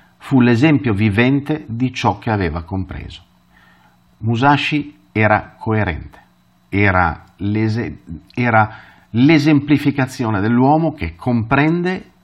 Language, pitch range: Italian, 85-120 Hz